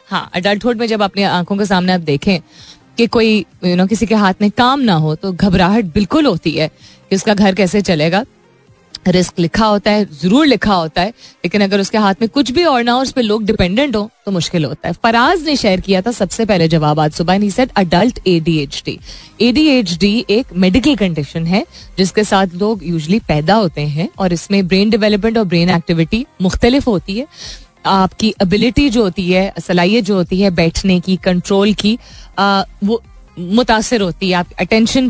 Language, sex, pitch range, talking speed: Hindi, female, 180-230 Hz, 195 wpm